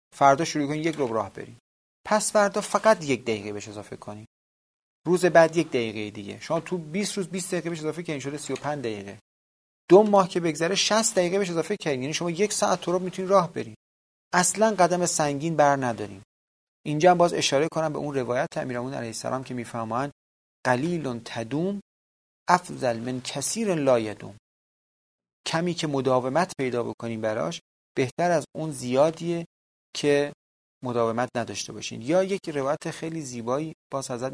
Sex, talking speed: male, 165 wpm